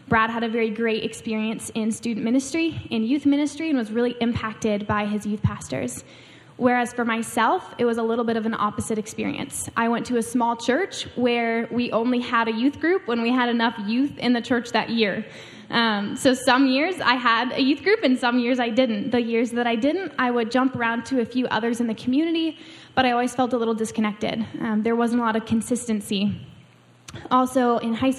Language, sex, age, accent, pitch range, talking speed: English, female, 10-29, American, 220-245 Hz, 215 wpm